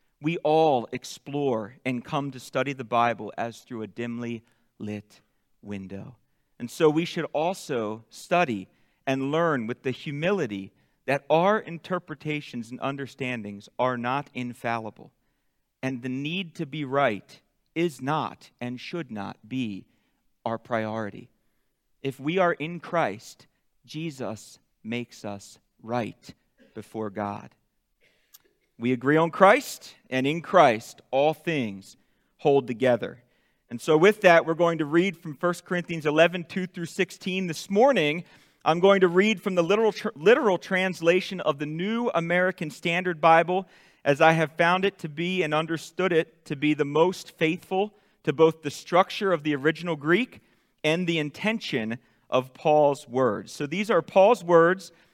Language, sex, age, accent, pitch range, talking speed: Italian, male, 40-59, American, 125-175 Hz, 150 wpm